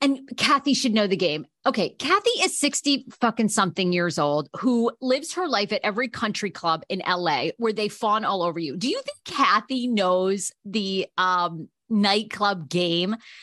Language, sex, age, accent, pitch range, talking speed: English, female, 30-49, American, 195-280 Hz, 175 wpm